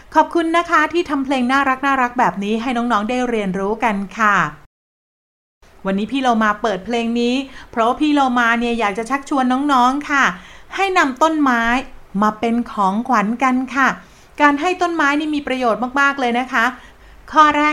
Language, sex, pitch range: Thai, female, 215-275 Hz